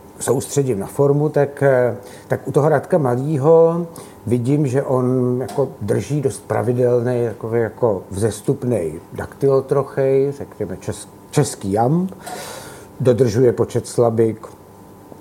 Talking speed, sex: 105 wpm, male